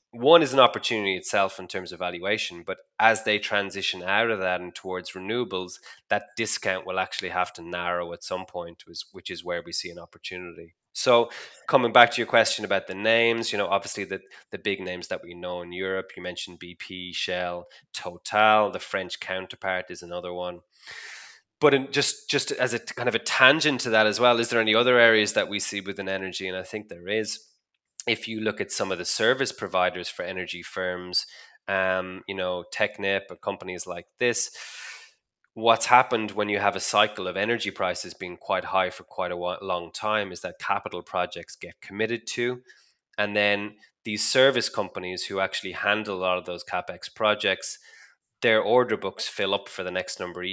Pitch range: 90-110 Hz